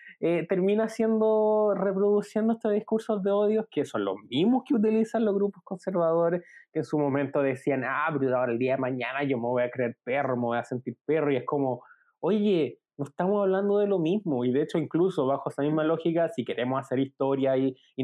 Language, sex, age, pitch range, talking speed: Spanish, male, 20-39, 140-195 Hz, 215 wpm